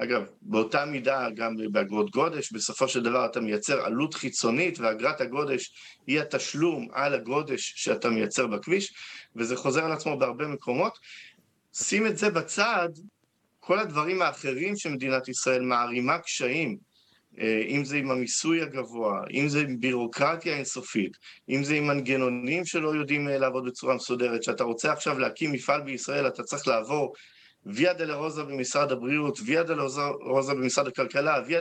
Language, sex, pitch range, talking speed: Hebrew, male, 130-155 Hz, 150 wpm